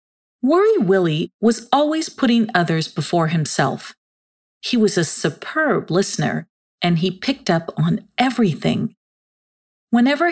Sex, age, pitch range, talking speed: female, 40-59, 165-230 Hz, 115 wpm